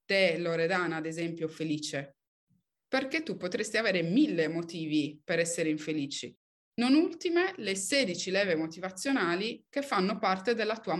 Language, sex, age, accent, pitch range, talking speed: Italian, female, 20-39, native, 165-225 Hz, 135 wpm